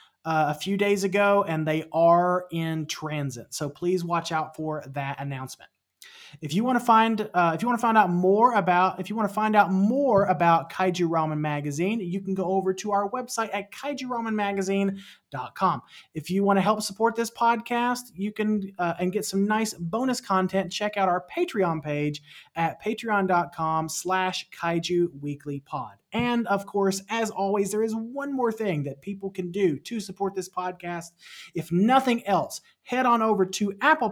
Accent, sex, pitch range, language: American, male, 155-210 Hz, English